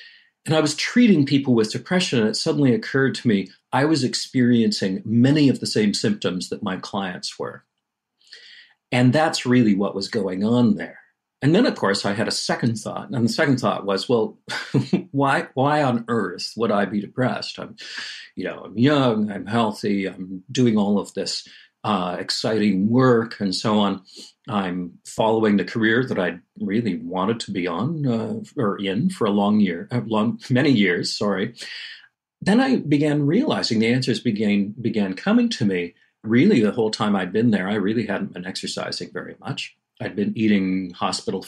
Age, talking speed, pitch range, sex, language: 40-59, 180 wpm, 100-140 Hz, male, English